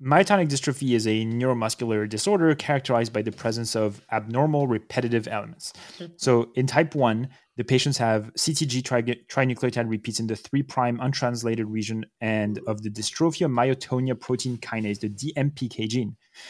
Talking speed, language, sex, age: 145 wpm, English, male, 20-39